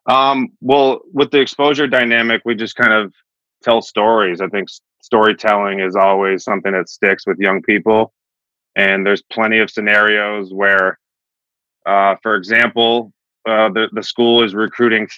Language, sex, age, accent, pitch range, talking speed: English, male, 20-39, American, 95-115 Hz, 155 wpm